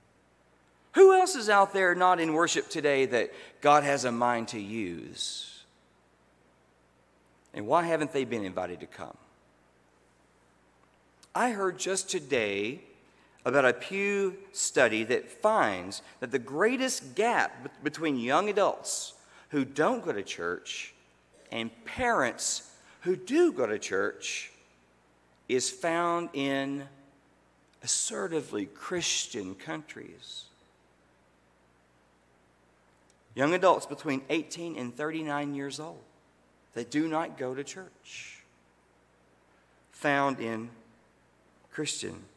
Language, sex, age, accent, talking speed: English, male, 40-59, American, 110 wpm